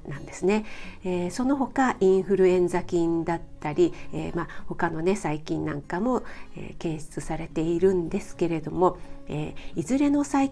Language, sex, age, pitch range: Japanese, female, 50-69, 170-225 Hz